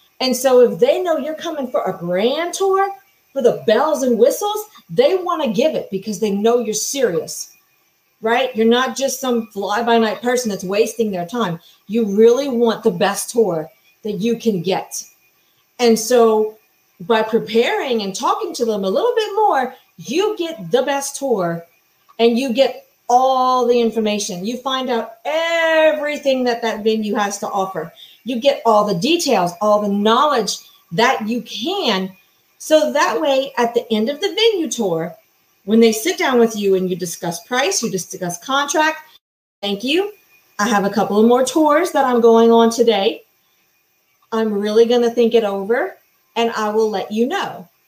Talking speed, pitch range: 180 wpm, 215-280 Hz